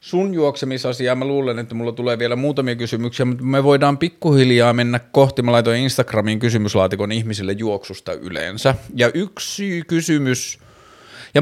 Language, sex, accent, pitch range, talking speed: Finnish, male, native, 105-130 Hz, 140 wpm